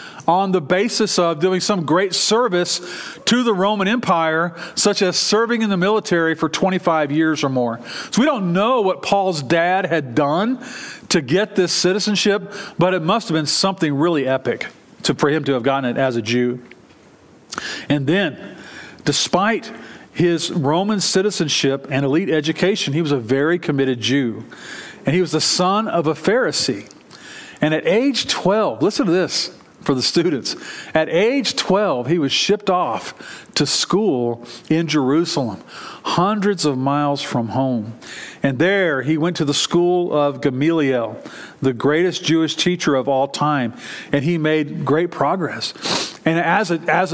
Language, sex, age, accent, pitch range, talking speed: English, male, 40-59, American, 145-190 Hz, 160 wpm